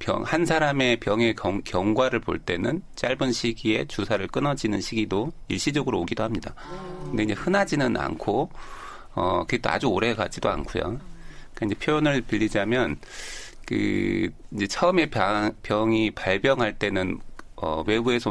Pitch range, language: 105-130 Hz, Korean